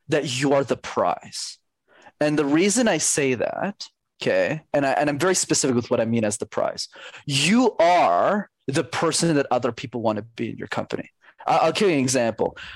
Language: English